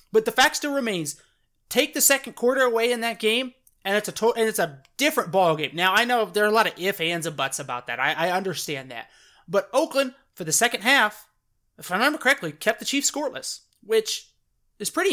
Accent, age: American, 30-49